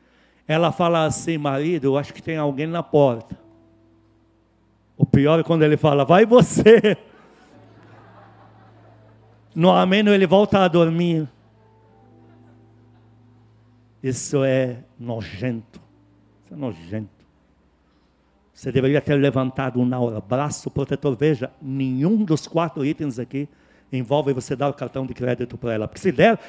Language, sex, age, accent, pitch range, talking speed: Portuguese, male, 50-69, Brazilian, 125-200 Hz, 130 wpm